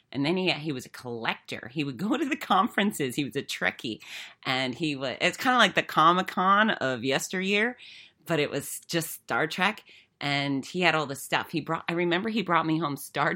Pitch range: 130-165 Hz